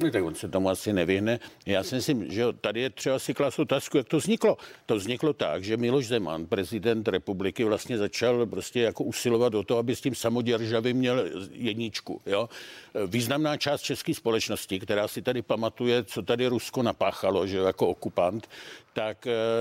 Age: 60-79